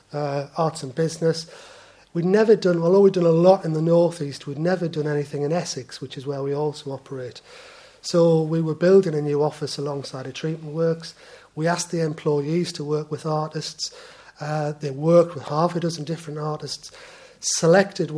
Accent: British